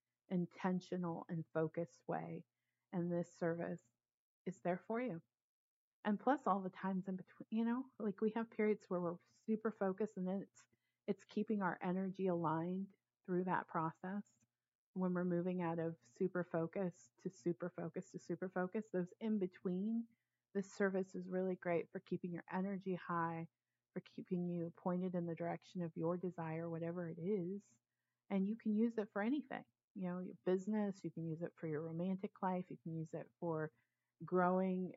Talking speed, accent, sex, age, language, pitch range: 175 wpm, American, female, 30-49, English, 170-195 Hz